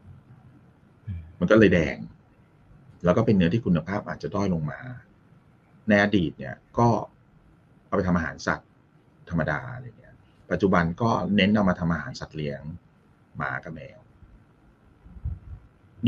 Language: Thai